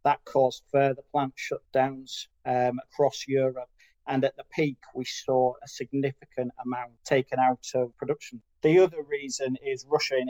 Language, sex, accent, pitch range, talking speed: English, male, British, 125-135 Hz, 155 wpm